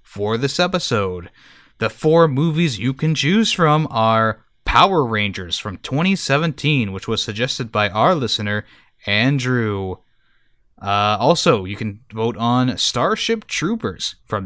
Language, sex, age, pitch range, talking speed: English, male, 20-39, 110-155 Hz, 130 wpm